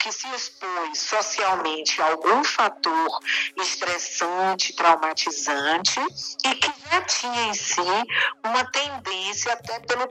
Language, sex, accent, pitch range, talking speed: Portuguese, female, Brazilian, 190-265 Hz, 115 wpm